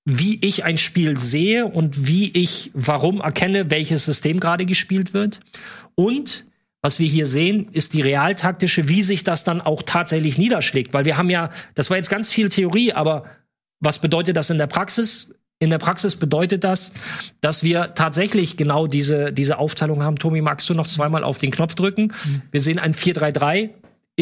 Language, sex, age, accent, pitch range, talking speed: German, male, 40-59, German, 150-190 Hz, 180 wpm